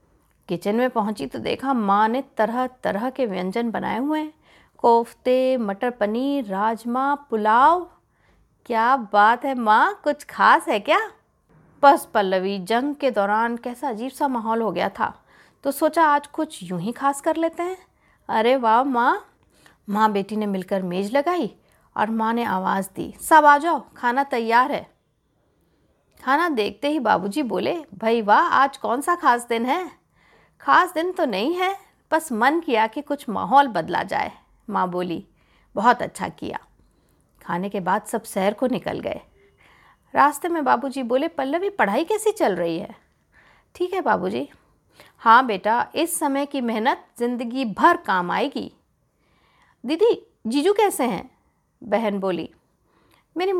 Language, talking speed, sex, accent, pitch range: Hindi, 155 wpm, female, native, 220-315 Hz